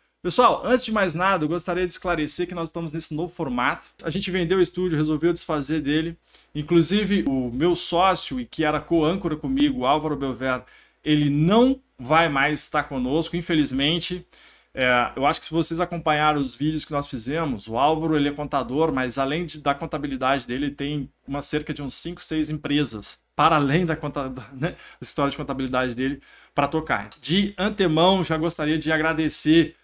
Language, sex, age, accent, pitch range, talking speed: Portuguese, male, 20-39, Brazilian, 140-170 Hz, 180 wpm